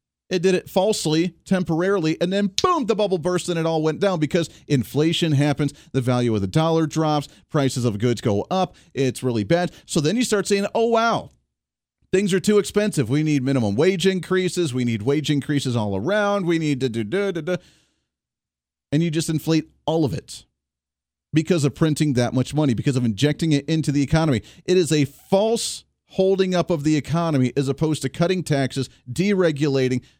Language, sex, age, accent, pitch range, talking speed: English, male, 40-59, American, 130-180 Hz, 195 wpm